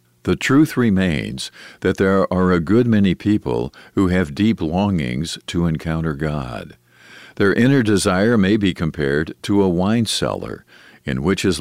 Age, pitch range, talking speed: 50-69, 80-100 Hz, 155 wpm